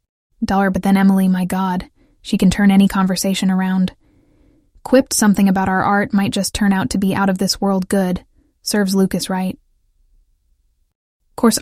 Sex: female